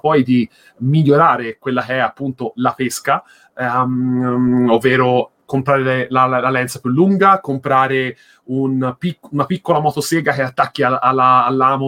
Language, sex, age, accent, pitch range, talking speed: Italian, male, 30-49, native, 125-145 Hz, 130 wpm